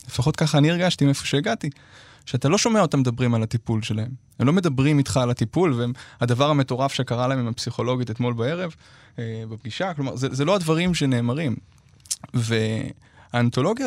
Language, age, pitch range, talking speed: Hebrew, 20-39, 125-160 Hz, 160 wpm